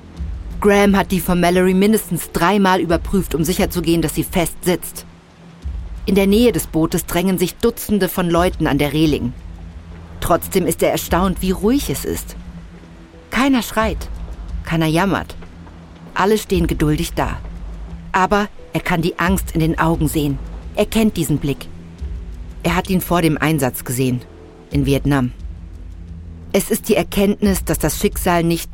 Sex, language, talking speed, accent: female, German, 150 wpm, German